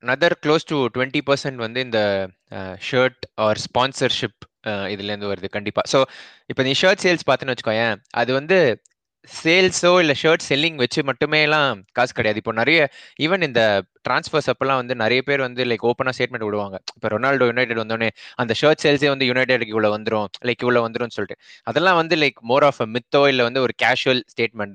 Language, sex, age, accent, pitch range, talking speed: Tamil, male, 20-39, native, 115-145 Hz, 175 wpm